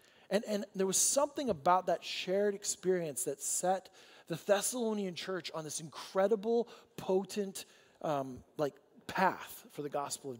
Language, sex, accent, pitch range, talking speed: English, male, American, 150-200 Hz, 145 wpm